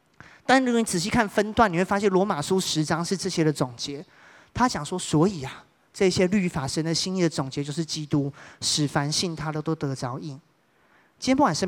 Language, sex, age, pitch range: Chinese, male, 30-49, 145-185 Hz